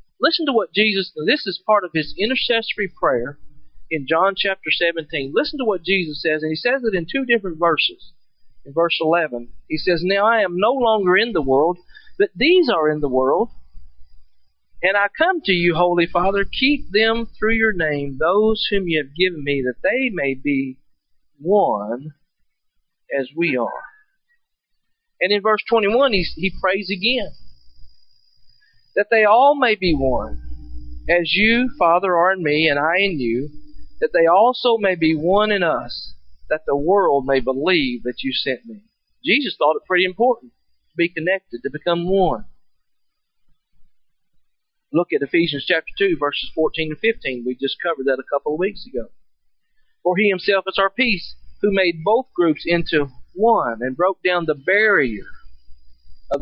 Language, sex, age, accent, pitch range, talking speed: English, male, 40-59, American, 140-210 Hz, 170 wpm